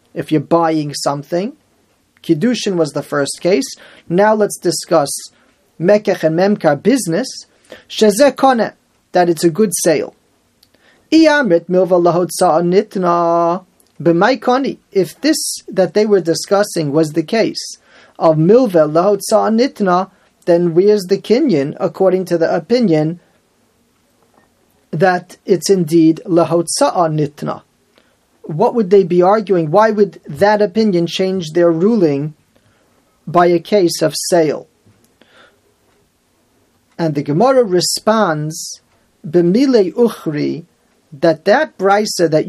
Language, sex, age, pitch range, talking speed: English, male, 40-59, 165-210 Hz, 105 wpm